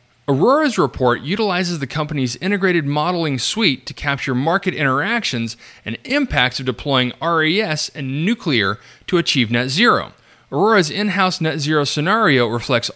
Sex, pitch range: male, 120-185 Hz